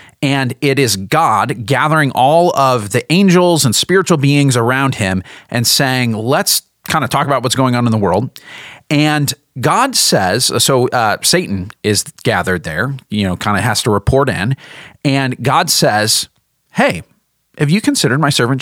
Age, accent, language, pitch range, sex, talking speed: 40-59, American, English, 125-165 Hz, male, 170 wpm